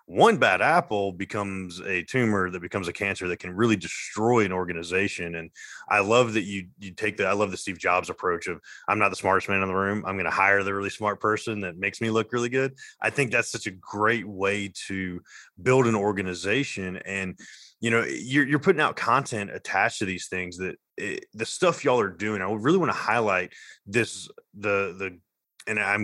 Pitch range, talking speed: 100-120 Hz, 215 wpm